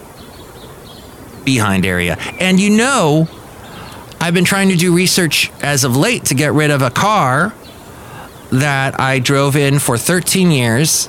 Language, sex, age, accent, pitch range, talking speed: English, male, 30-49, American, 110-145 Hz, 145 wpm